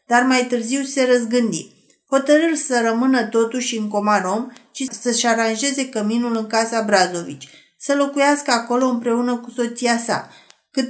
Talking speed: 150 wpm